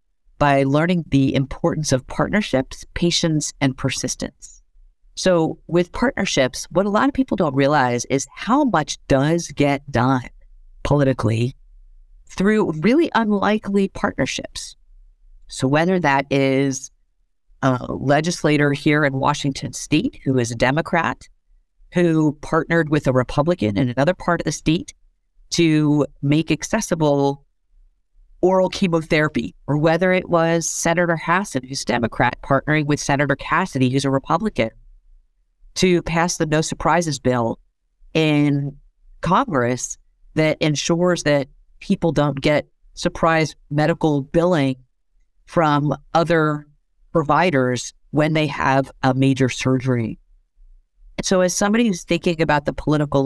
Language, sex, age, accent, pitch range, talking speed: English, female, 50-69, American, 130-165 Hz, 125 wpm